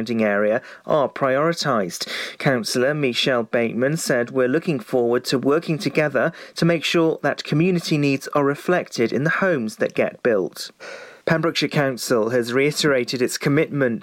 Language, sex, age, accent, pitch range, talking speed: English, male, 40-59, British, 130-165 Hz, 140 wpm